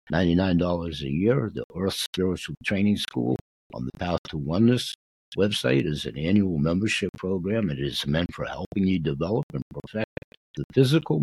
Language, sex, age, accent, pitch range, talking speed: English, male, 60-79, American, 75-115 Hz, 155 wpm